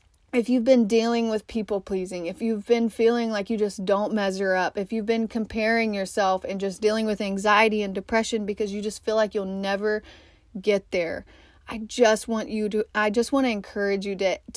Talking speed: 205 wpm